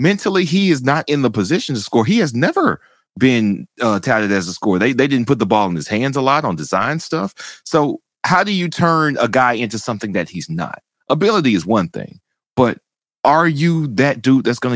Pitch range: 105-150 Hz